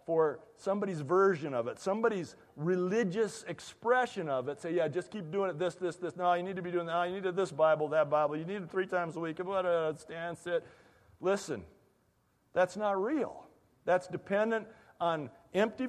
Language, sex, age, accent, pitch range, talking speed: English, male, 50-69, American, 165-225 Hz, 185 wpm